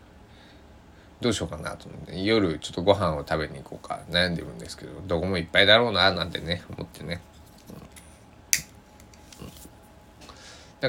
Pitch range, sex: 80-115 Hz, male